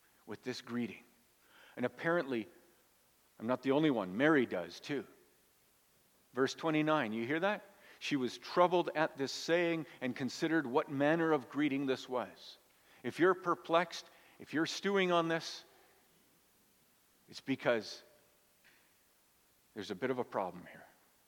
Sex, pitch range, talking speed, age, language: male, 140-175 Hz, 140 wpm, 50-69, English